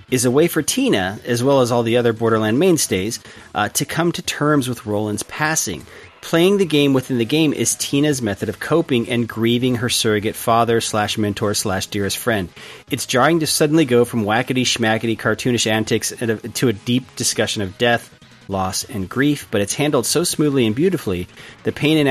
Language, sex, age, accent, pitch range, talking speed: English, male, 30-49, American, 105-130 Hz, 180 wpm